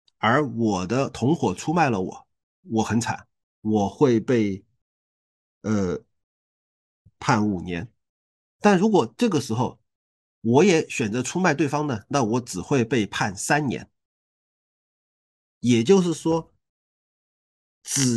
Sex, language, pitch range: male, Chinese, 105-155 Hz